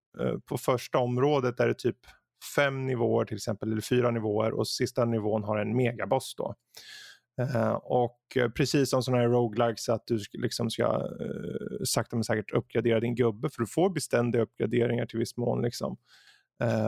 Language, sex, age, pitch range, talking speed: Swedish, male, 20-39, 115-140 Hz, 160 wpm